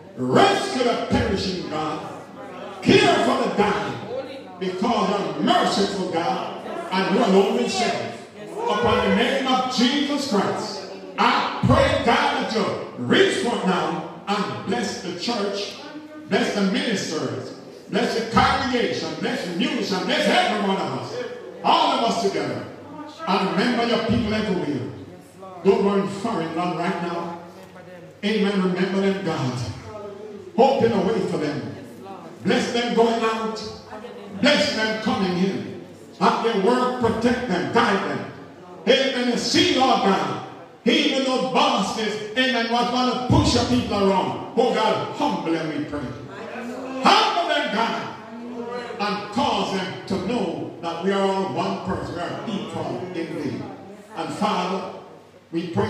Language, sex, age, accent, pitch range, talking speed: English, male, 50-69, American, 195-245 Hz, 140 wpm